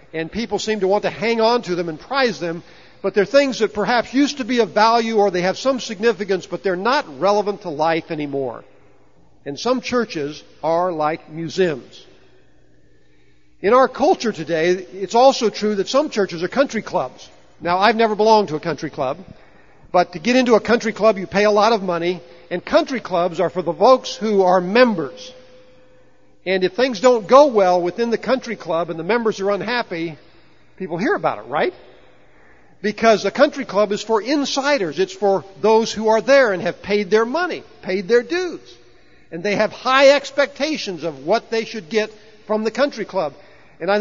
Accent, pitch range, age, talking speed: American, 175-240 Hz, 50-69, 195 wpm